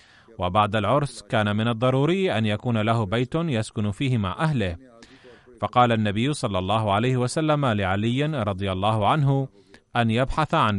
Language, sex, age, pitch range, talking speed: Arabic, male, 30-49, 105-130 Hz, 145 wpm